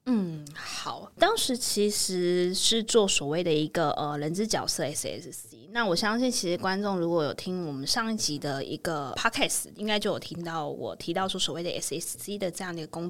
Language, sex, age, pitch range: Chinese, female, 20-39, 160-205 Hz